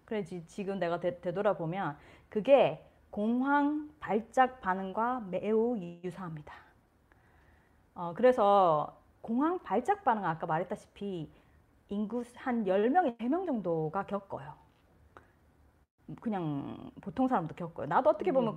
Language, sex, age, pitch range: Korean, female, 30-49, 175-250 Hz